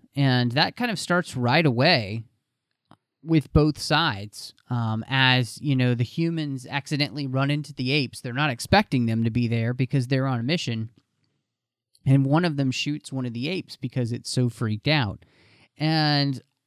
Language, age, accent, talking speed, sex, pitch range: English, 30-49, American, 175 wpm, male, 125-155 Hz